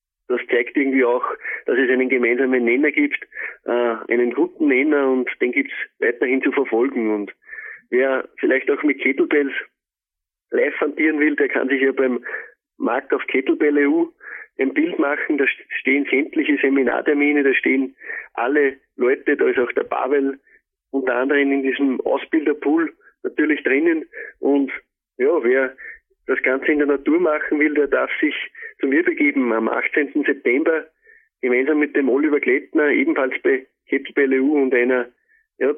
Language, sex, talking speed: German, male, 155 wpm